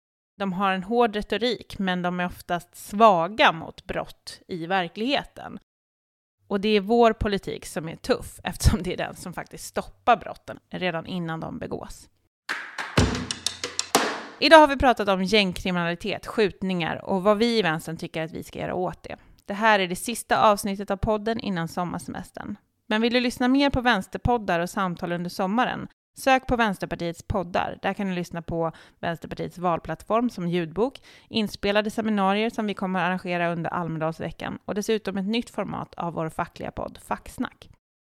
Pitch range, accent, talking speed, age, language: 175-225 Hz, native, 165 wpm, 30-49, Swedish